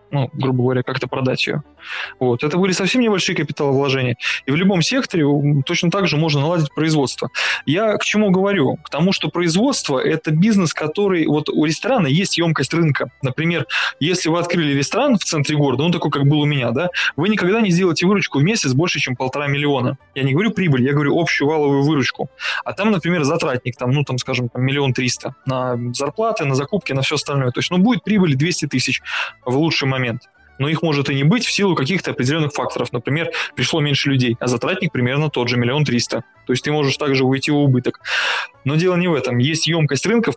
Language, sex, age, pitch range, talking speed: Russian, male, 20-39, 130-170 Hz, 205 wpm